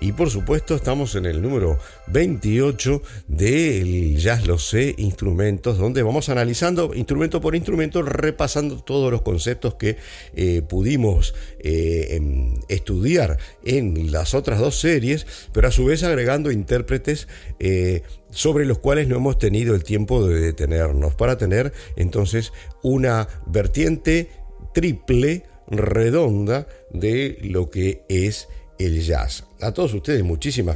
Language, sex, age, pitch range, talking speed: English, male, 50-69, 90-135 Hz, 130 wpm